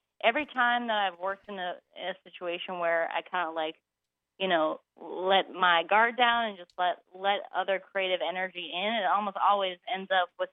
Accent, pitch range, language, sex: American, 175-205 Hz, English, female